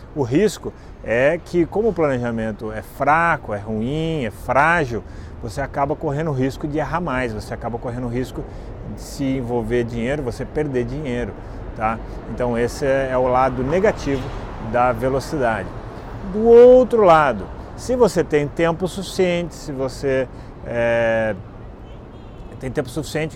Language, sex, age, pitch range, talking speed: Portuguese, male, 30-49, 115-160 Hz, 140 wpm